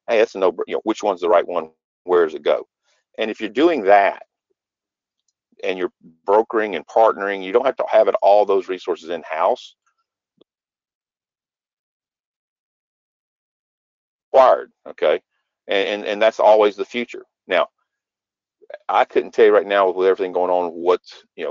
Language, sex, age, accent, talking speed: English, male, 50-69, American, 155 wpm